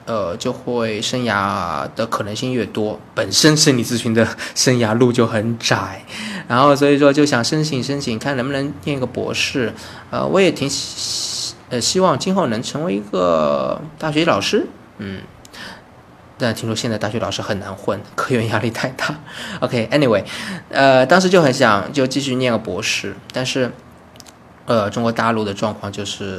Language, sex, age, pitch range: Chinese, male, 20-39, 105-140 Hz